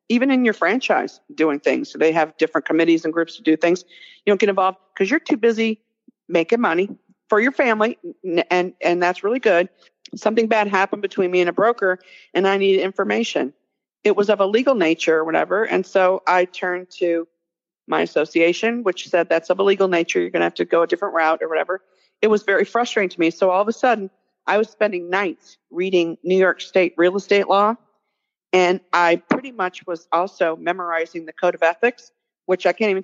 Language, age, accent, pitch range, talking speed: English, 40-59, American, 170-205 Hz, 215 wpm